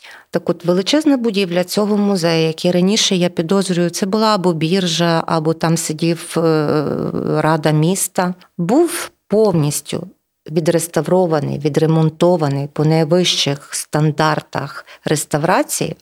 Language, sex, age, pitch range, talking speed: Ukrainian, female, 40-59, 160-215 Hz, 105 wpm